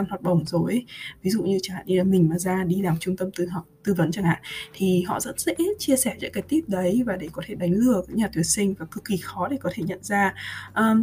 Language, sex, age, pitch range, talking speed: Vietnamese, female, 20-39, 180-240 Hz, 290 wpm